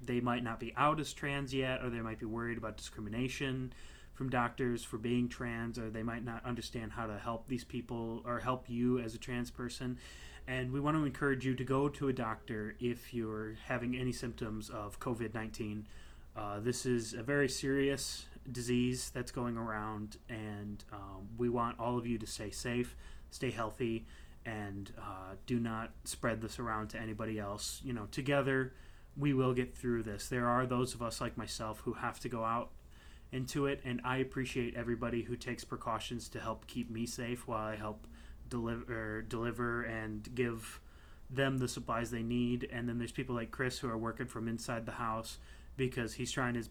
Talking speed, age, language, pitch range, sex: 190 wpm, 20-39, English, 110-125 Hz, male